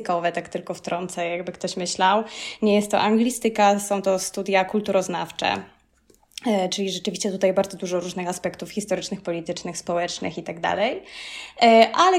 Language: Polish